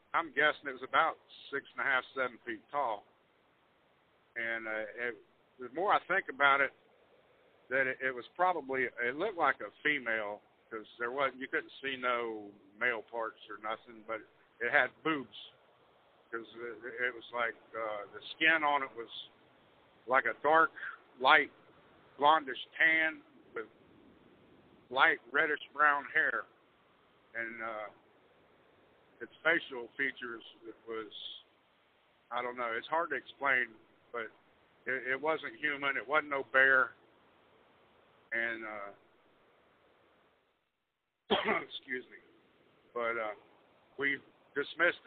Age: 60-79